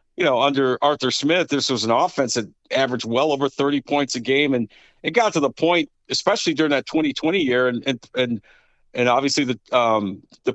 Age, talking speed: 50-69, 200 wpm